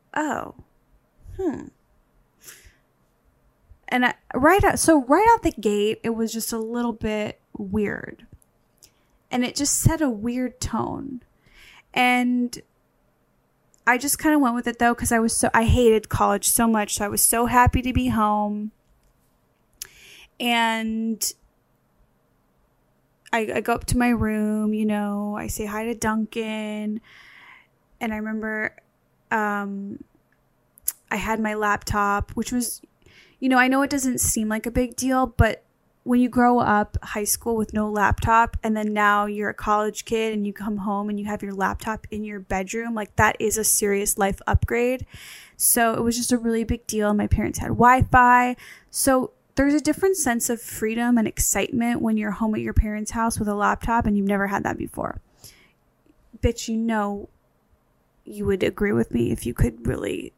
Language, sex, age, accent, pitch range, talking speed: English, female, 10-29, American, 210-245 Hz, 170 wpm